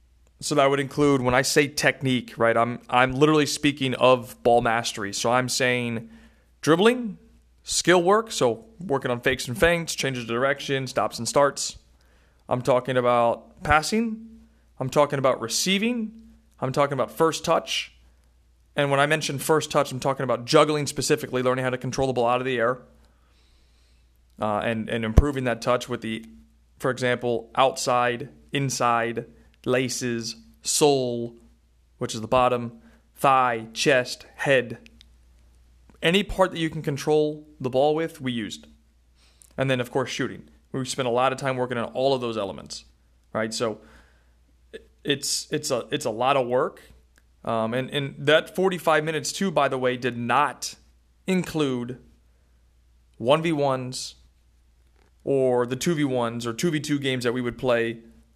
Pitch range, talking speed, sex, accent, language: 100-140 Hz, 160 wpm, male, American, English